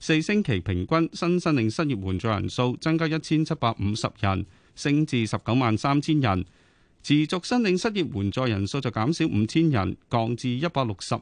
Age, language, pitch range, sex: 30-49, Chinese, 105-155 Hz, male